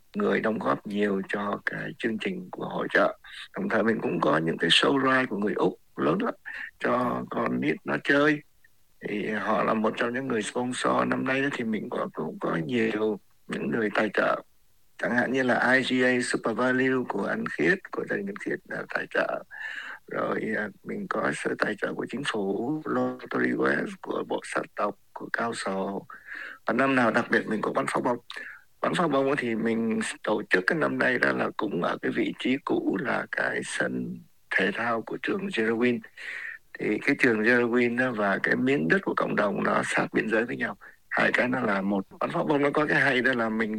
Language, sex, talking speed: Vietnamese, male, 210 wpm